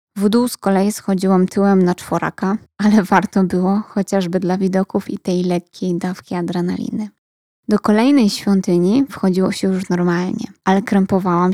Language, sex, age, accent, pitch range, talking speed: Polish, female, 20-39, native, 185-210 Hz, 145 wpm